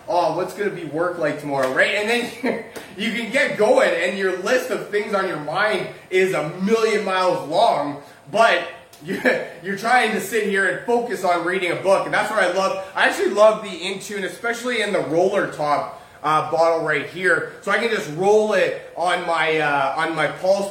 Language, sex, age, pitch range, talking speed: English, male, 20-39, 165-210 Hz, 200 wpm